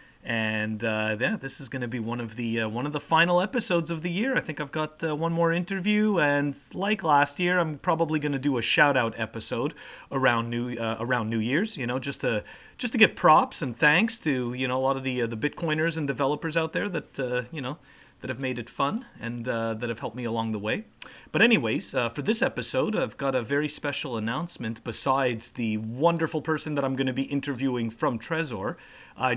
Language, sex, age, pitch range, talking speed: English, male, 30-49, 125-165 Hz, 235 wpm